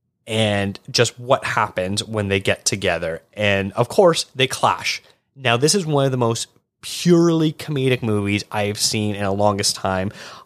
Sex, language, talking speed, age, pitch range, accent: male, English, 165 wpm, 20-39, 100-130 Hz, American